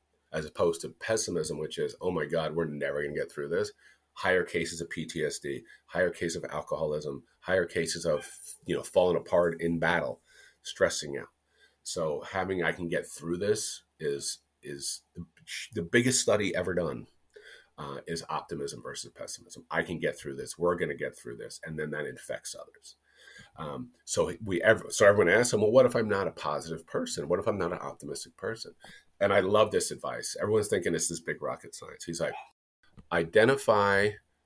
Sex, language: male, English